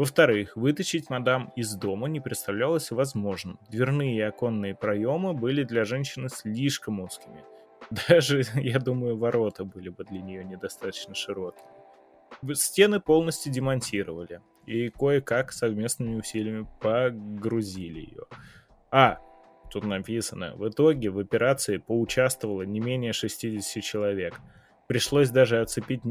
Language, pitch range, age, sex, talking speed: Russian, 105-140 Hz, 20-39, male, 115 wpm